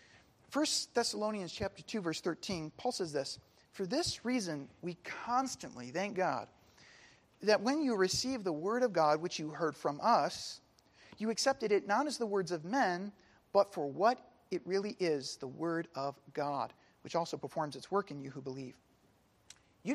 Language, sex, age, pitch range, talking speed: English, male, 40-59, 155-215 Hz, 175 wpm